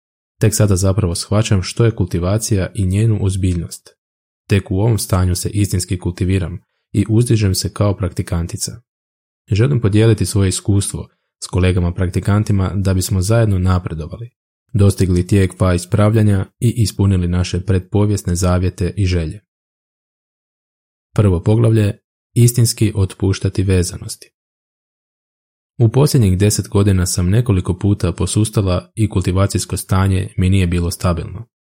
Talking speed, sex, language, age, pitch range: 120 wpm, male, Croatian, 20-39, 90-105 Hz